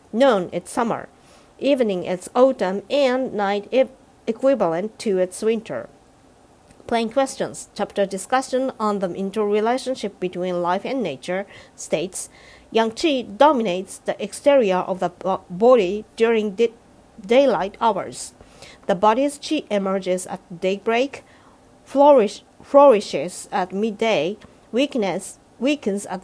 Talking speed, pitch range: 105 wpm, 190-260 Hz